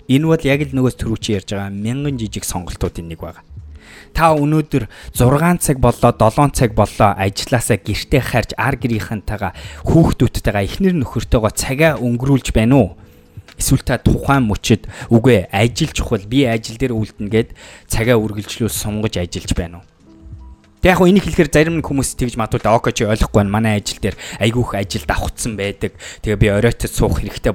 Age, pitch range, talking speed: 20-39, 100-140 Hz, 140 wpm